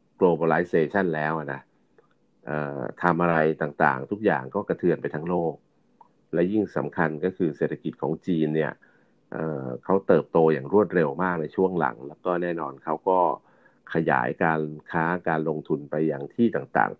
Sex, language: male, Thai